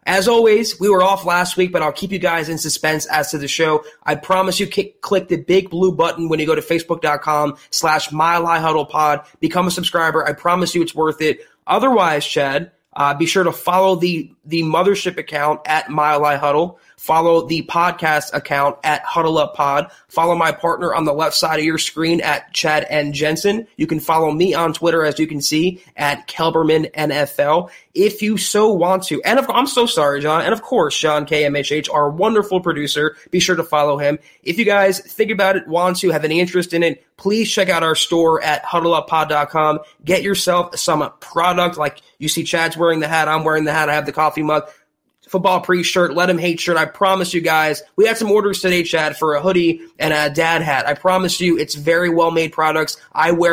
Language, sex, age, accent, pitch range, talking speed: English, male, 20-39, American, 155-180 Hz, 210 wpm